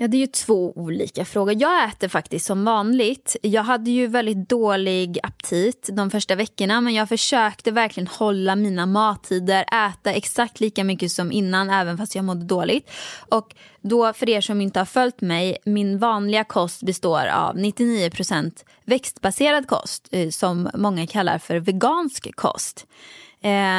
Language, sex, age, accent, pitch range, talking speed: Swedish, female, 20-39, native, 185-230 Hz, 155 wpm